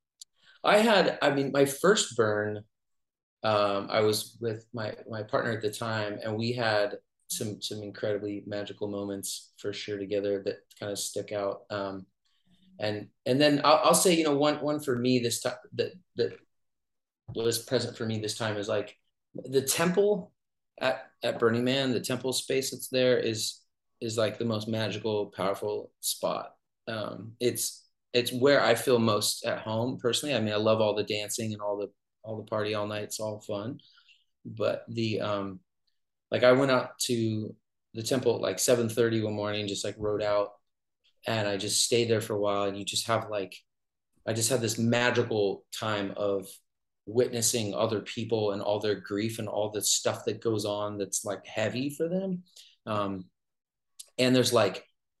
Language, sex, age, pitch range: English, male, 30-49, 105-125 Hz